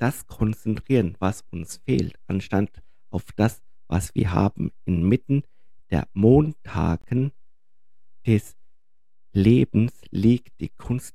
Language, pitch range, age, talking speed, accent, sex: German, 90-110 Hz, 50-69, 100 wpm, German, male